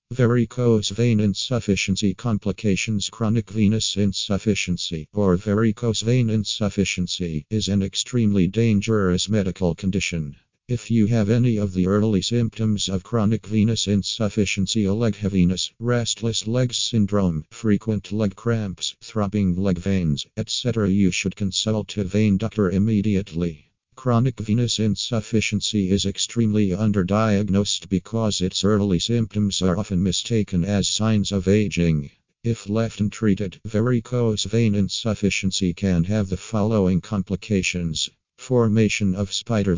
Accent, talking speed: American, 120 wpm